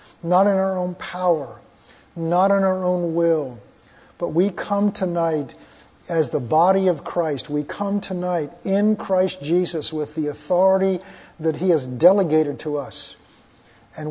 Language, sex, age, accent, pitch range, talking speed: English, male, 50-69, American, 160-195 Hz, 150 wpm